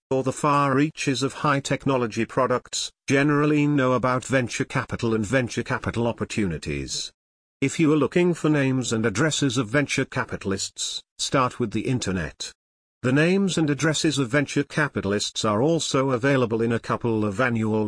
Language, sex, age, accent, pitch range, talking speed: English, male, 50-69, British, 110-140 Hz, 160 wpm